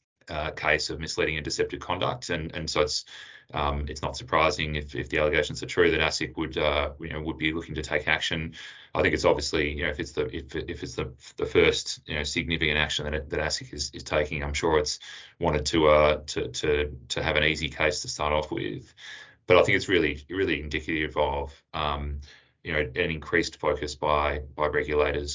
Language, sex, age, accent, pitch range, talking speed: English, male, 20-39, Australian, 75-80 Hz, 220 wpm